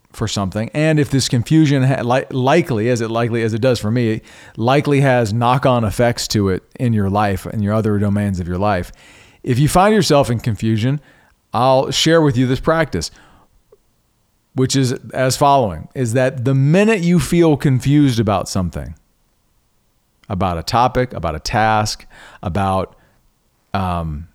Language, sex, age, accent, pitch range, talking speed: English, male, 40-59, American, 95-130 Hz, 160 wpm